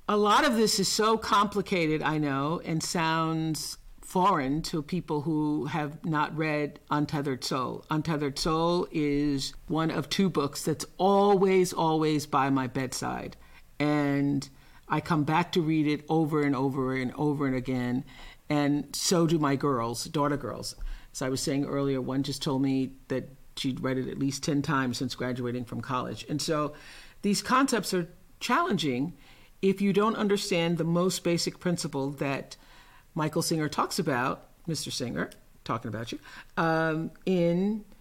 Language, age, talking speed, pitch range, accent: English, 50-69, 160 wpm, 140-180 Hz, American